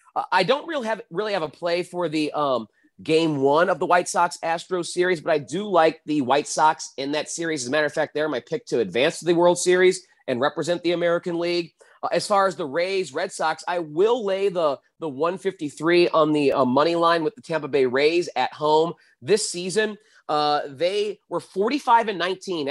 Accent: American